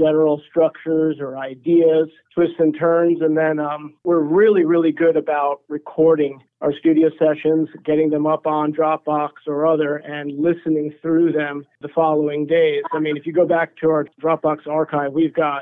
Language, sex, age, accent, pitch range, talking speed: English, male, 50-69, American, 150-165 Hz, 175 wpm